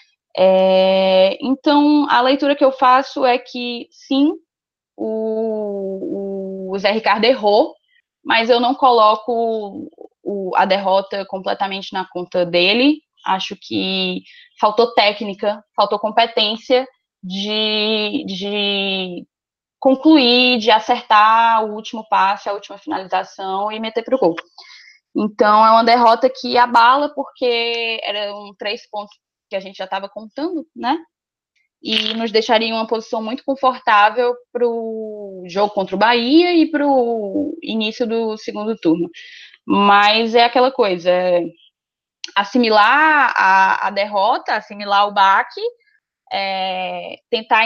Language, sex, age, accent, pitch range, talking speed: Portuguese, female, 10-29, Brazilian, 200-255 Hz, 125 wpm